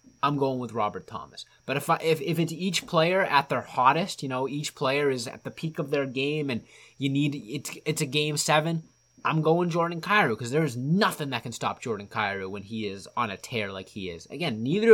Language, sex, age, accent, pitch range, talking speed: English, male, 20-39, American, 120-160 Hz, 235 wpm